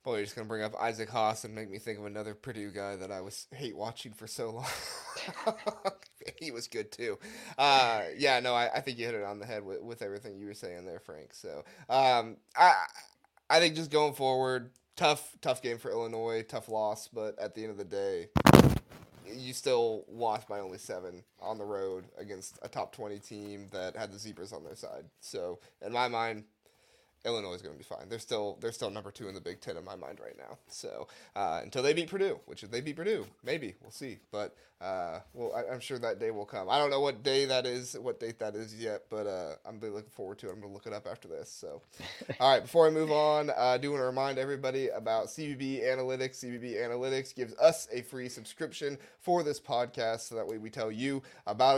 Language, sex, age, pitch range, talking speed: English, male, 20-39, 110-145 Hz, 235 wpm